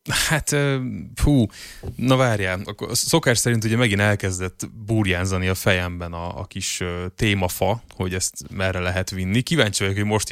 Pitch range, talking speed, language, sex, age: 95-115 Hz, 145 wpm, Hungarian, male, 20-39